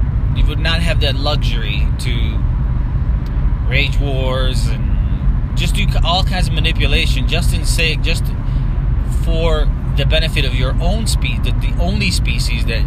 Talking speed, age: 145 wpm, 30-49